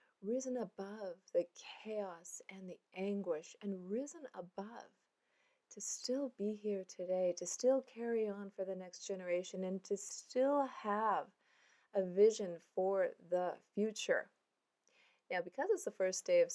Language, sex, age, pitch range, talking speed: English, female, 30-49, 195-265 Hz, 140 wpm